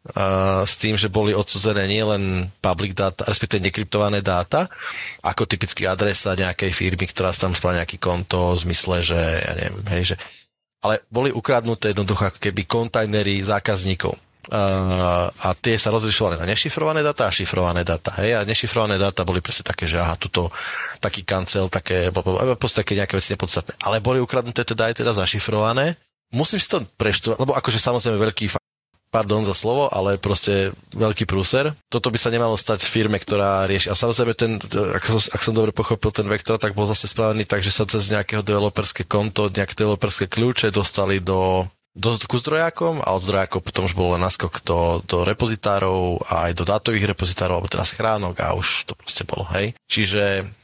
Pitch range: 95-110 Hz